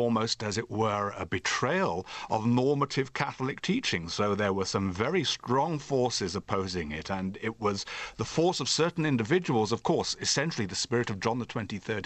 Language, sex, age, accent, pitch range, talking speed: English, male, 50-69, British, 110-135 Hz, 180 wpm